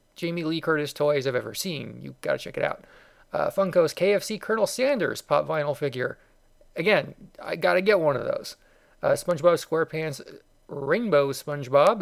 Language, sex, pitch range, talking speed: English, male, 145-190 Hz, 170 wpm